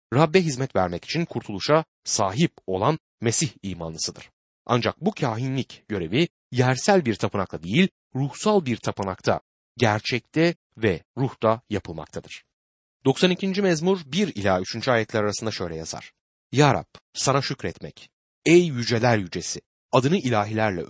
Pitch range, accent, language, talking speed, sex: 100-160 Hz, native, Turkish, 115 wpm, male